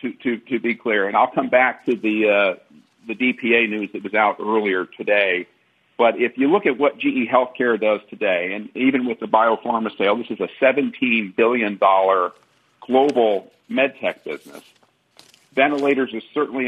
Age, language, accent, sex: 50-69, English, American, male